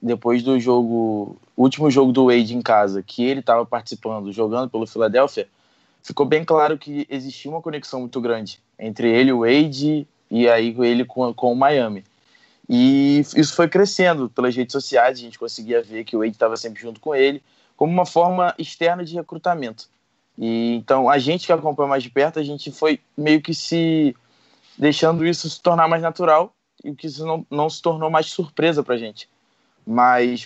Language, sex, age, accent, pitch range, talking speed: Portuguese, male, 20-39, Brazilian, 120-150 Hz, 190 wpm